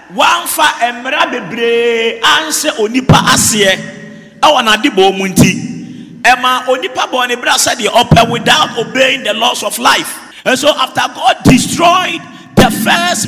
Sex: male